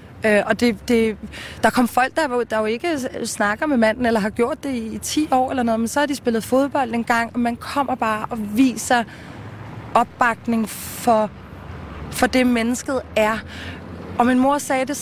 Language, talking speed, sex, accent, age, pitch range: Danish, 195 wpm, female, native, 20-39, 225-260 Hz